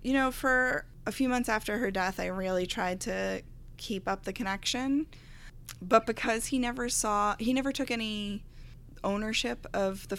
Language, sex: English, female